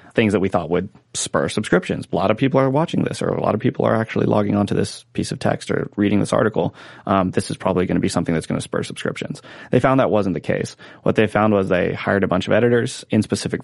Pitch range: 100-120 Hz